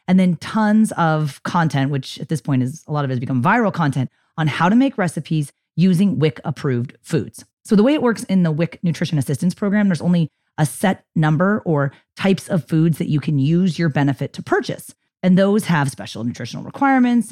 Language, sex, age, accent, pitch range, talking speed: English, female, 30-49, American, 145-190 Hz, 210 wpm